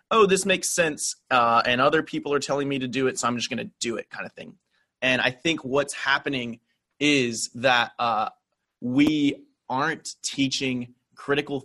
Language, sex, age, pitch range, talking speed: English, male, 30-49, 120-145 Hz, 185 wpm